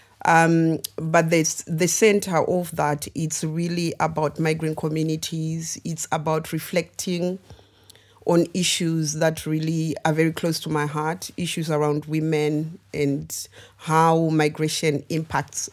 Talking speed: 120 wpm